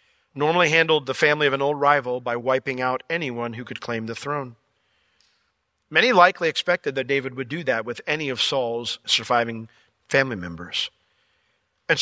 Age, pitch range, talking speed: 40-59, 115-145 Hz, 165 wpm